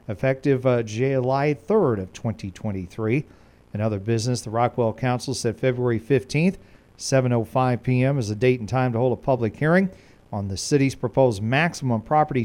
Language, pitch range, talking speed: English, 110-135 Hz, 160 wpm